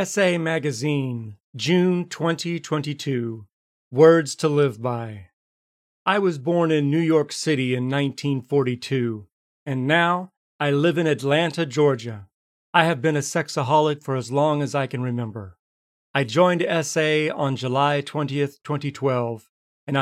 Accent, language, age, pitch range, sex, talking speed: American, English, 40-59, 125-155 Hz, male, 130 wpm